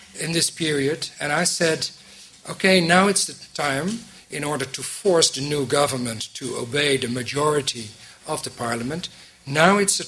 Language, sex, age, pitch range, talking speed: English, male, 60-79, 130-160 Hz, 165 wpm